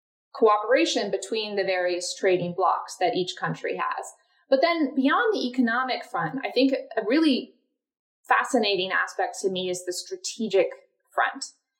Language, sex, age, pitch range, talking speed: English, female, 20-39, 185-255 Hz, 140 wpm